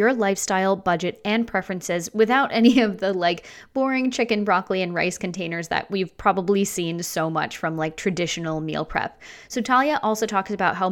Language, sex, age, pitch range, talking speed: English, female, 20-39, 180-225 Hz, 185 wpm